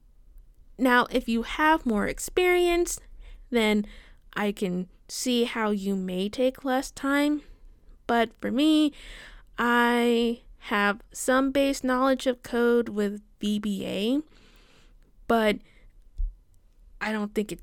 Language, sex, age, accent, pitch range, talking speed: English, female, 20-39, American, 205-260 Hz, 110 wpm